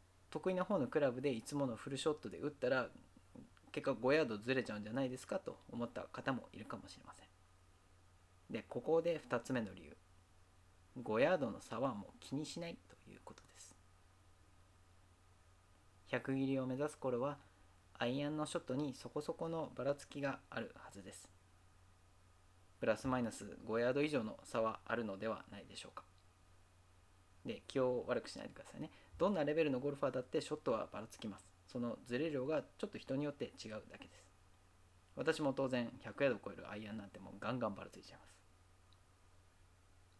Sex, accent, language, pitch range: male, native, Japanese, 95-130 Hz